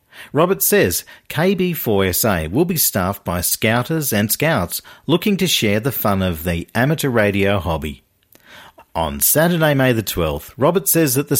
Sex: male